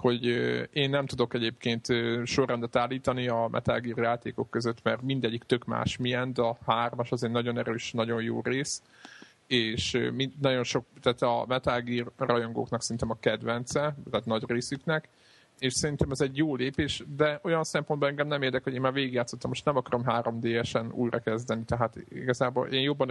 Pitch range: 115-135 Hz